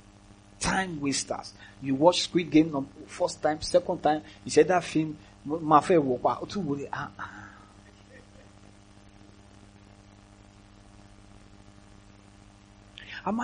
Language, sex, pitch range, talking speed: English, male, 100-145 Hz, 80 wpm